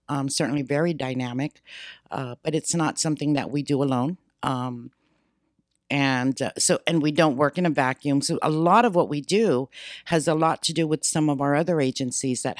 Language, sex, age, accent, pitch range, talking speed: English, female, 60-79, American, 135-160 Hz, 205 wpm